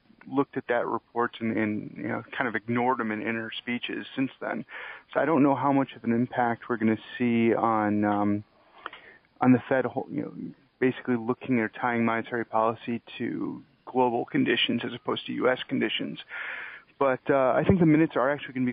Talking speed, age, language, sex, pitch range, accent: 195 wpm, 40-59, English, male, 115-130 Hz, American